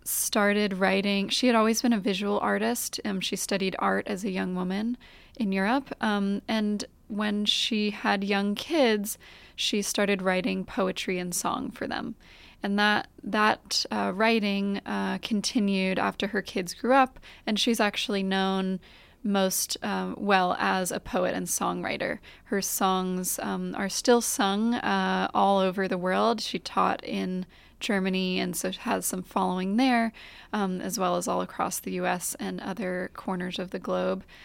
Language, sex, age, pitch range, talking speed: English, female, 20-39, 185-220 Hz, 160 wpm